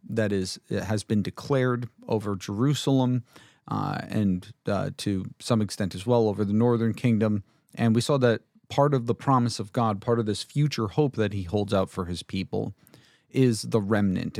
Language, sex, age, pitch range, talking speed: English, male, 40-59, 100-120 Hz, 190 wpm